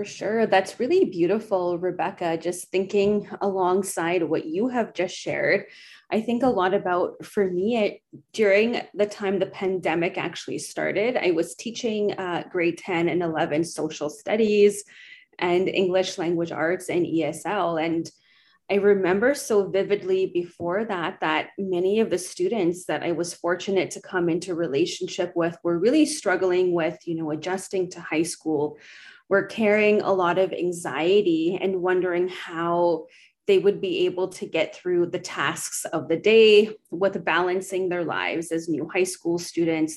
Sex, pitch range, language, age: female, 170-210 Hz, English, 20-39